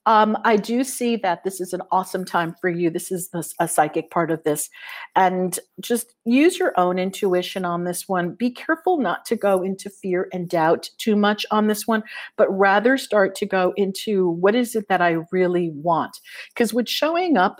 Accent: American